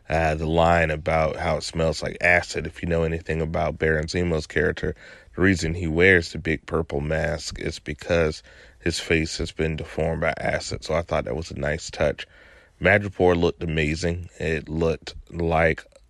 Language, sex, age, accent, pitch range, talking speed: English, male, 20-39, American, 80-90 Hz, 180 wpm